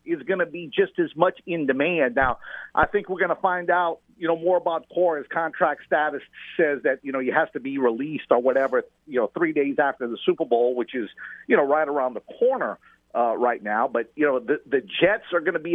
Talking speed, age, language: 245 wpm, 50-69, English